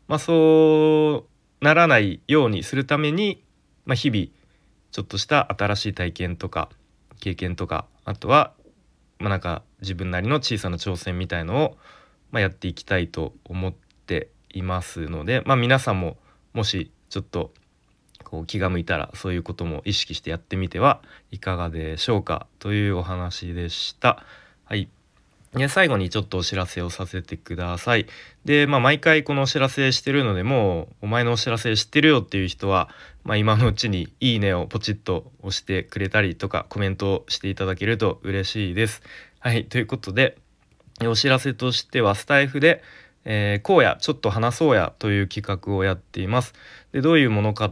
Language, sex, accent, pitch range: Japanese, male, native, 95-125 Hz